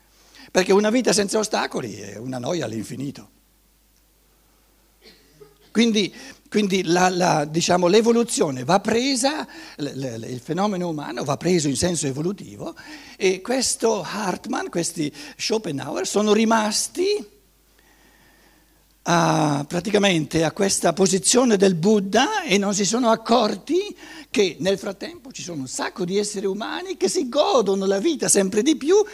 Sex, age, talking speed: male, 60-79, 130 wpm